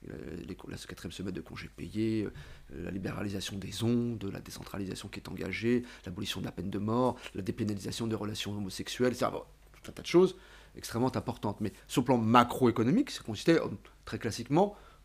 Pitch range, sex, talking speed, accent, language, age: 100-130 Hz, male, 180 wpm, French, French, 40-59